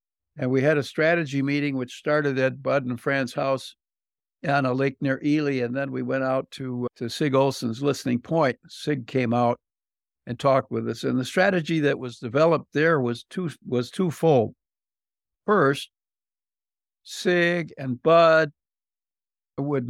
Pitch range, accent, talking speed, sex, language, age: 115-145 Hz, American, 160 wpm, male, English, 60-79